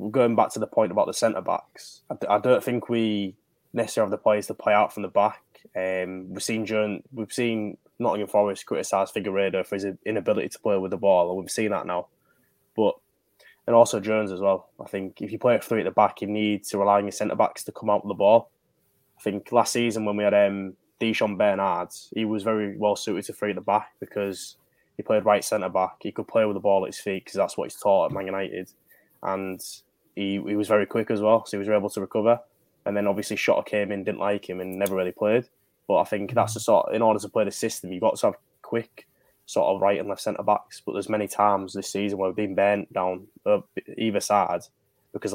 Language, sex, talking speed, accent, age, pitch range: English, male, 245 wpm, British, 10-29, 95-110 Hz